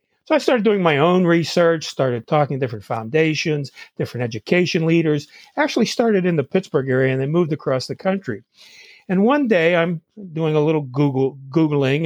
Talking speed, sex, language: 180 wpm, male, English